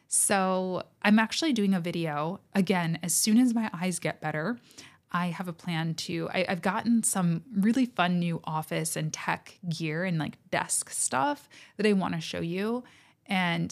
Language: English